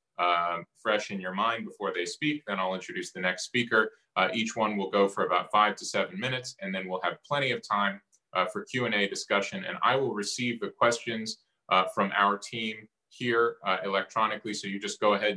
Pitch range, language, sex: 95-120 Hz, English, male